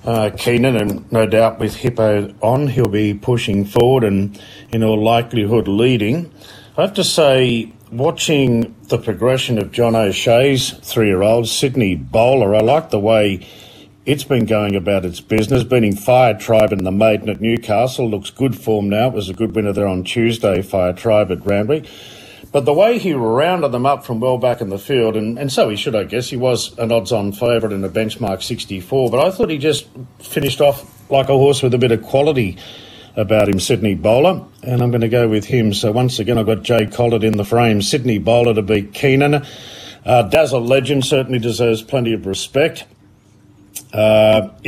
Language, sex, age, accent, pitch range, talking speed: English, male, 50-69, Australian, 105-125 Hz, 190 wpm